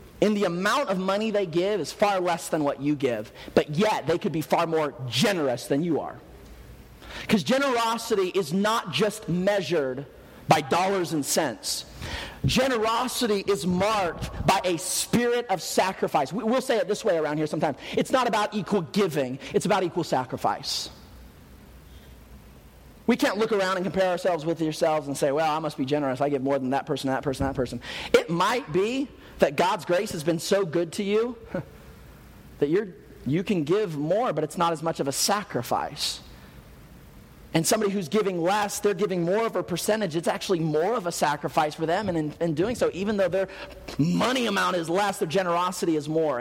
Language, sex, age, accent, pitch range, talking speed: English, male, 40-59, American, 150-205 Hz, 190 wpm